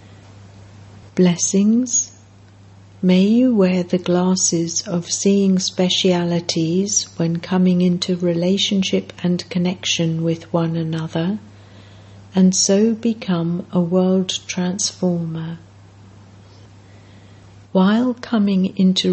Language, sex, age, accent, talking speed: English, female, 60-79, British, 85 wpm